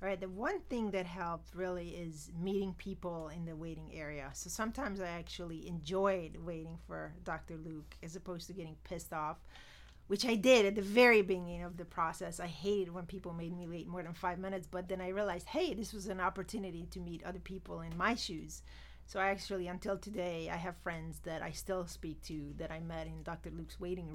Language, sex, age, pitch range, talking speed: English, female, 30-49, 165-185 Hz, 215 wpm